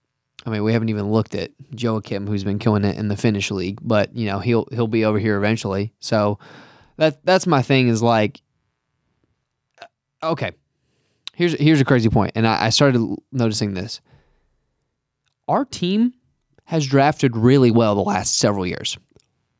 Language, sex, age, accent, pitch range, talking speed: English, male, 20-39, American, 115-150 Hz, 170 wpm